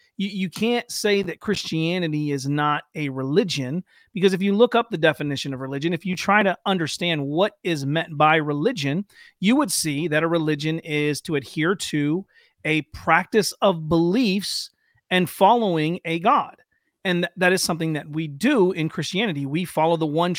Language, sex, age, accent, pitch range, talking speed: English, male, 40-59, American, 155-200 Hz, 175 wpm